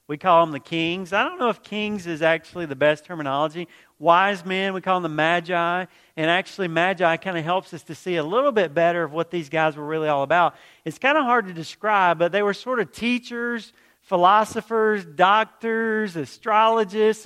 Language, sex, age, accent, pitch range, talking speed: English, male, 40-59, American, 165-220 Hz, 200 wpm